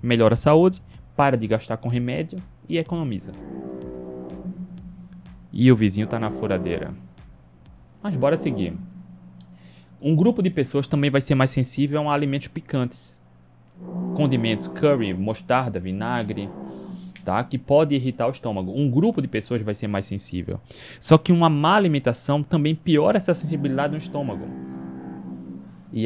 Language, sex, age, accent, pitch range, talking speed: Portuguese, male, 20-39, Brazilian, 100-150 Hz, 140 wpm